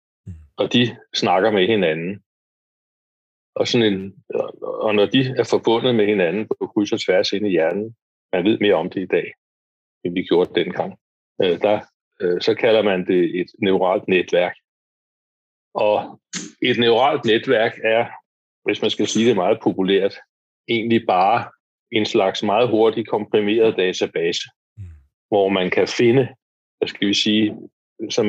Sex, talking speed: male, 150 wpm